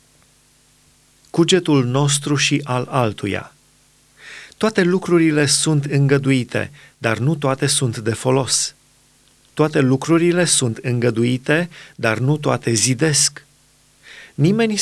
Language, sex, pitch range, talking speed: Romanian, male, 125-150 Hz, 95 wpm